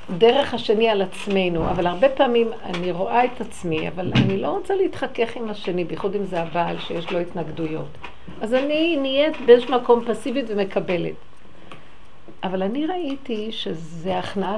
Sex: female